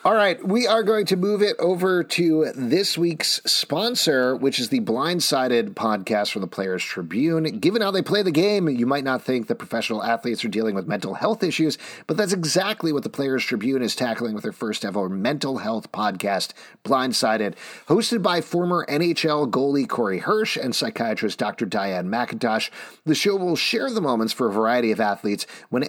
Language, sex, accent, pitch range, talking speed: English, male, American, 115-170 Hz, 190 wpm